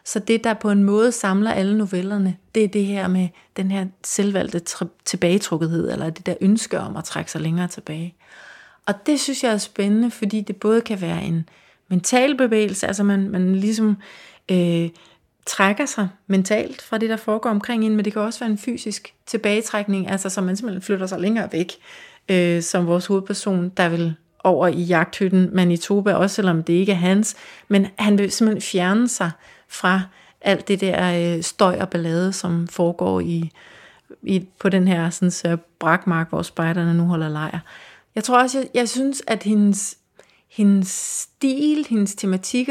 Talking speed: 180 wpm